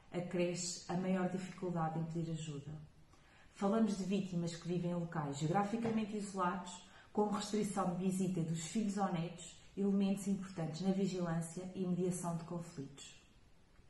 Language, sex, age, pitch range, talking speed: Portuguese, female, 30-49, 170-195 Hz, 140 wpm